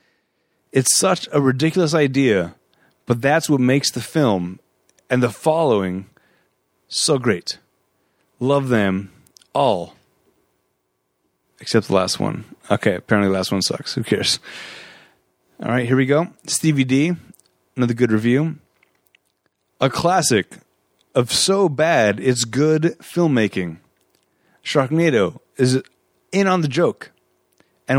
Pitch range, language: 105-150 Hz, English